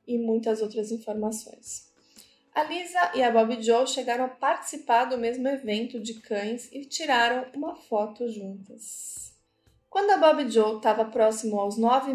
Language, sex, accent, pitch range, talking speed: Portuguese, female, Brazilian, 215-260 Hz, 155 wpm